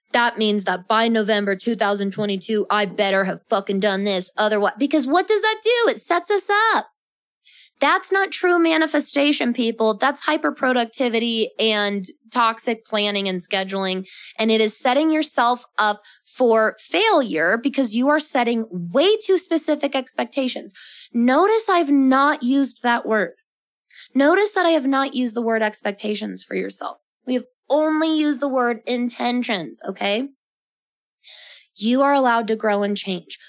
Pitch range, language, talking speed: 210-285 Hz, English, 150 wpm